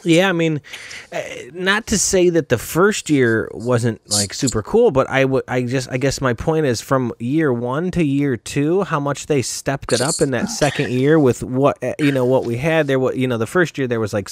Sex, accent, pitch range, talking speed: male, American, 115-160 Hz, 240 wpm